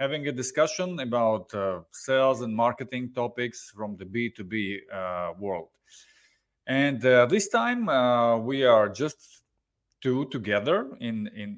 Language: English